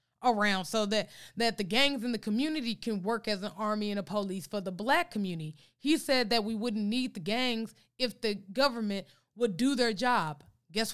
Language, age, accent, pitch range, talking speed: English, 20-39, American, 190-255 Hz, 205 wpm